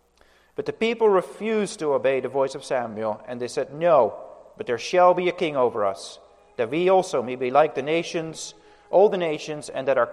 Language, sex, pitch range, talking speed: English, male, 125-190 Hz, 215 wpm